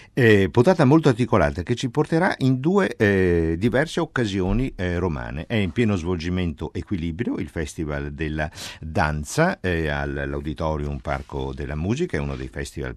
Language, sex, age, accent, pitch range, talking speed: Italian, male, 50-69, native, 75-100 Hz, 150 wpm